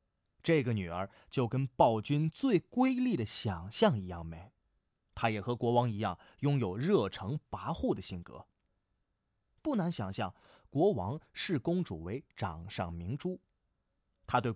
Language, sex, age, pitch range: Chinese, male, 20-39, 100-165 Hz